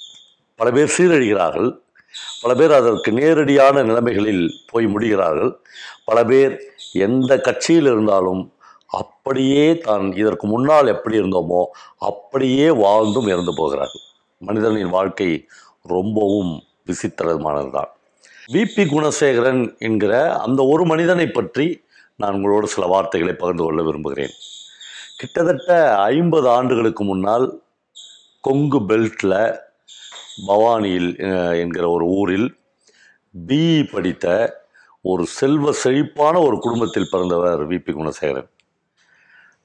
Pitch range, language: 95-140 Hz, Tamil